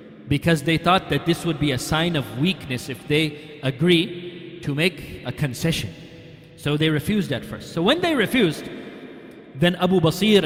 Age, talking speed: 40-59, 170 wpm